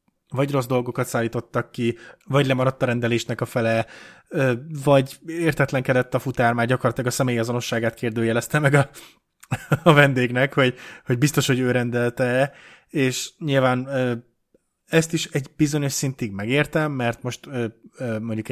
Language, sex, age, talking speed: Hungarian, male, 20-39, 135 wpm